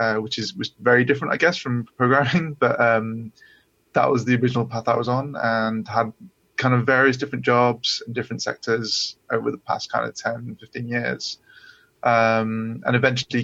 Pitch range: 115-130 Hz